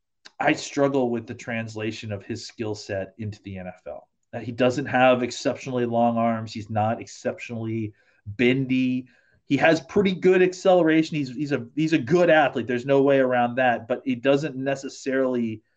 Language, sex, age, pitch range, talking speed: English, male, 30-49, 115-145 Hz, 170 wpm